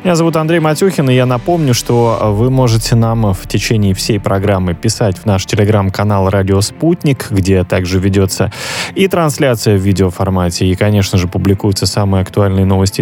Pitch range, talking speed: 100-125 Hz, 160 wpm